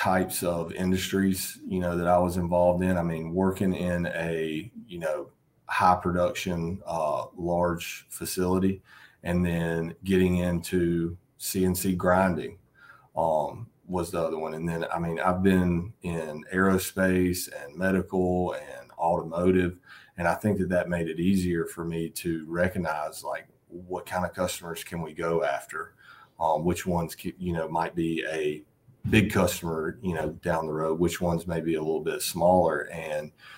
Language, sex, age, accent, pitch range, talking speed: English, male, 30-49, American, 85-95 Hz, 160 wpm